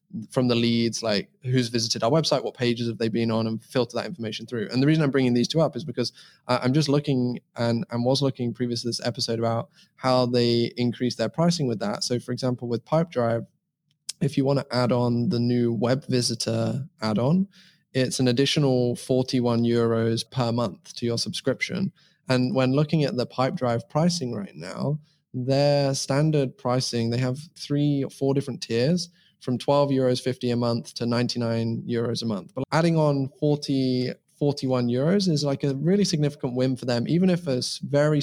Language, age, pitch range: English, 20-39, 120-145 Hz